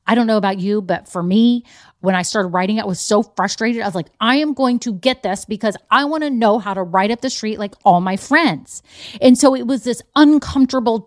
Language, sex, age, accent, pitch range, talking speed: English, female, 30-49, American, 190-245 Hz, 250 wpm